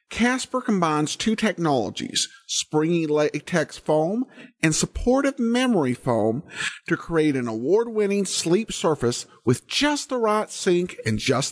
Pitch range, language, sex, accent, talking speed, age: 155-245 Hz, English, male, American, 125 wpm, 50-69